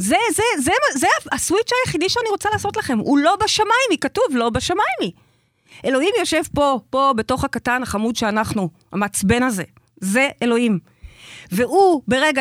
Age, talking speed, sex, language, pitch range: 30-49, 150 wpm, female, Hebrew, 190-300 Hz